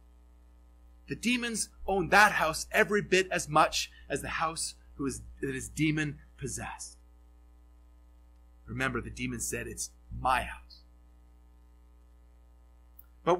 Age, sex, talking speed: 30-49, male, 120 wpm